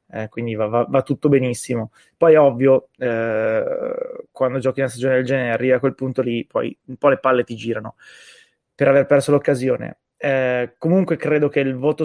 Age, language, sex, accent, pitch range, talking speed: 20-39, Italian, male, native, 130-150 Hz, 190 wpm